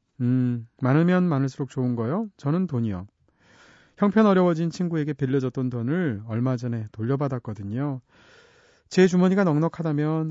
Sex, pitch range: male, 120-165 Hz